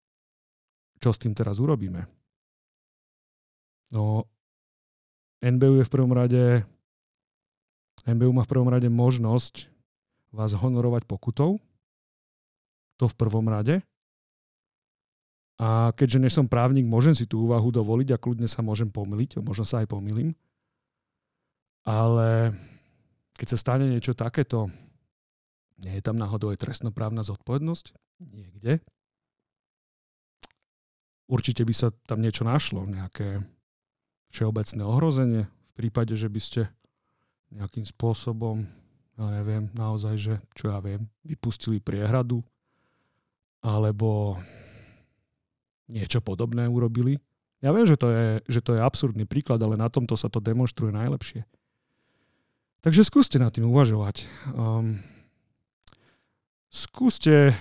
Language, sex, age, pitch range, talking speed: Slovak, male, 40-59, 110-130 Hz, 110 wpm